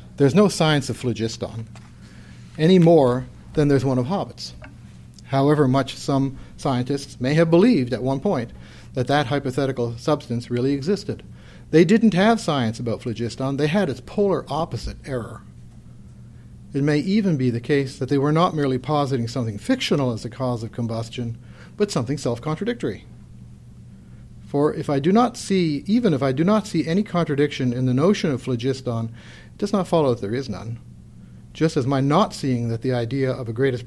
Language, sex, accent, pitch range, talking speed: English, male, American, 120-155 Hz, 175 wpm